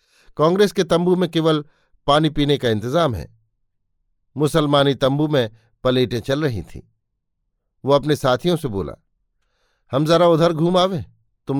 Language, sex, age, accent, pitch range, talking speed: Hindi, male, 50-69, native, 120-170 Hz, 145 wpm